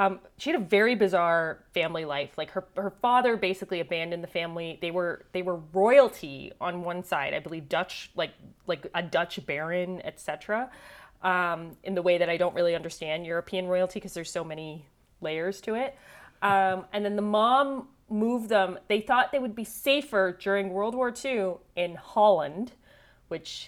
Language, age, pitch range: English, 30-49, 170-210 Hz